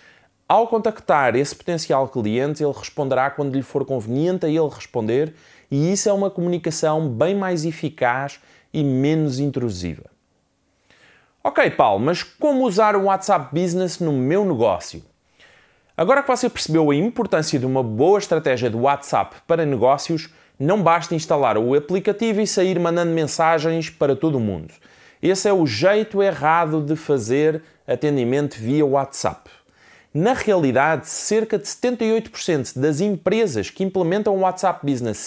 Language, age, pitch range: Portuguese, 20-39, 140-205 Hz